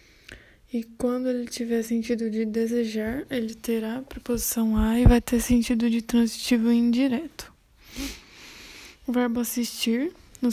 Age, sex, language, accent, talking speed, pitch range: 10-29, female, Portuguese, Brazilian, 130 wpm, 225-250 Hz